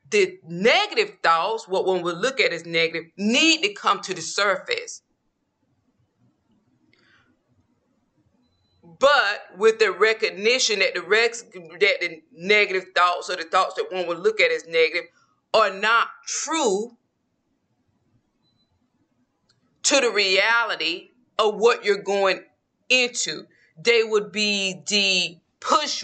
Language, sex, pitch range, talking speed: English, female, 180-235 Hz, 120 wpm